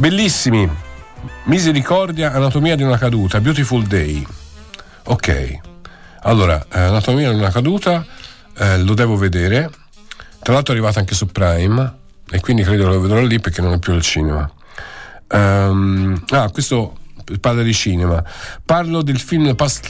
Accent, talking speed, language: native, 140 wpm, Italian